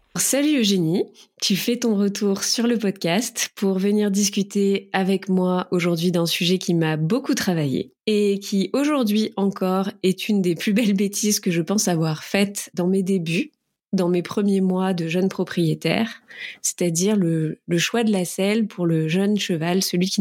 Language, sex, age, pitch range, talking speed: French, female, 20-39, 180-215 Hz, 175 wpm